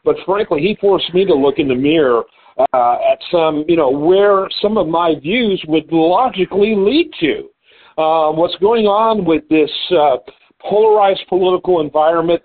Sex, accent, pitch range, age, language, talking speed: male, American, 150-210 Hz, 50-69, English, 165 wpm